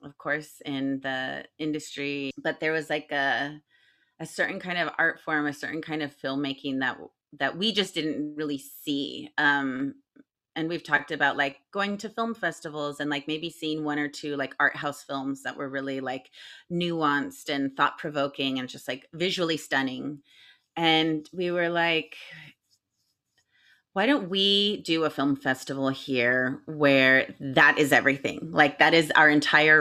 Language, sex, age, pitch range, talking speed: English, female, 30-49, 140-165 Hz, 165 wpm